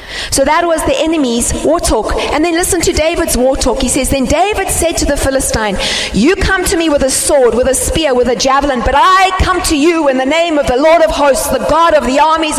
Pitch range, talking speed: 265-320 Hz, 255 wpm